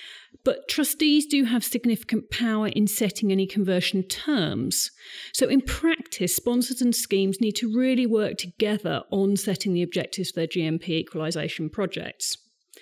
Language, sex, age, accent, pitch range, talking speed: English, female, 40-59, British, 195-260 Hz, 145 wpm